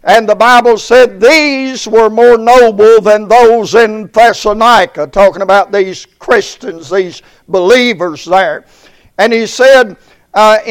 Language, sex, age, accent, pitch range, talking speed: English, male, 60-79, American, 215-245 Hz, 130 wpm